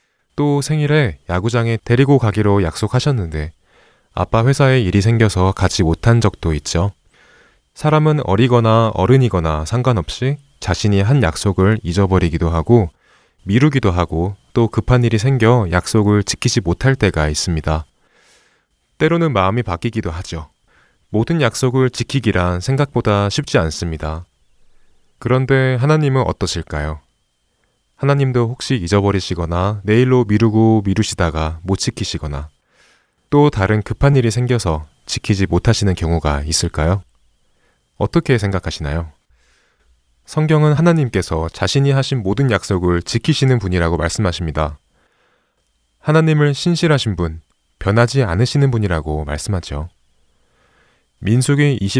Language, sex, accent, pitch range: Korean, male, native, 85-130 Hz